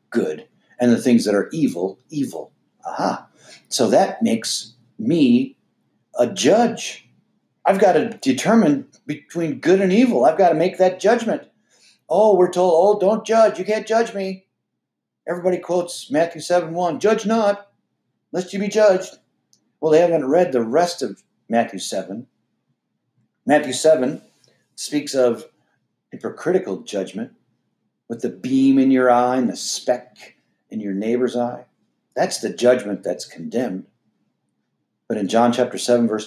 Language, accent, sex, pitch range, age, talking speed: English, American, male, 120-195 Hz, 50-69, 145 wpm